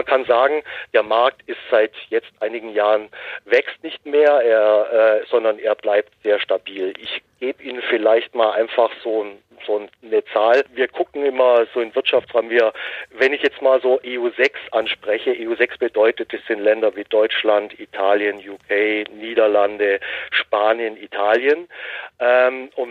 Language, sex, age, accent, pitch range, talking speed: German, male, 40-59, German, 105-145 Hz, 155 wpm